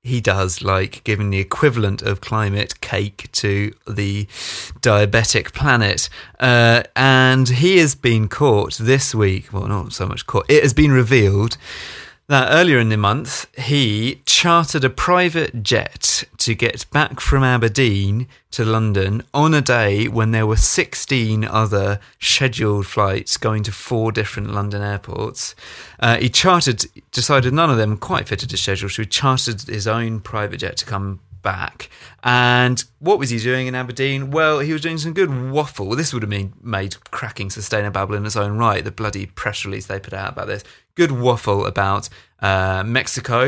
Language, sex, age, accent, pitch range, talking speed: English, male, 30-49, British, 100-125 Hz, 170 wpm